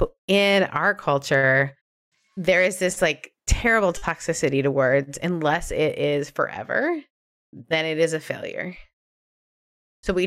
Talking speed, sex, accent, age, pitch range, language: 130 wpm, female, American, 30-49, 155-200 Hz, English